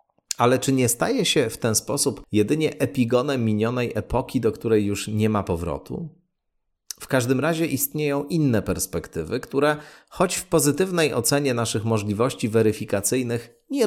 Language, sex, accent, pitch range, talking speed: Polish, male, native, 105-140 Hz, 145 wpm